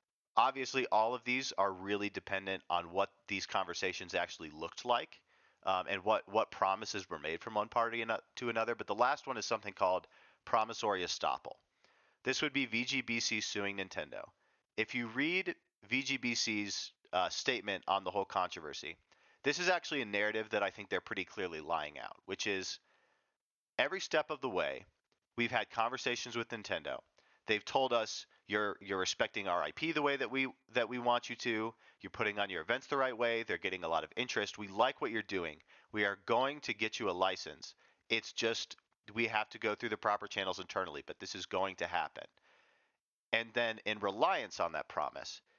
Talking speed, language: 190 wpm, English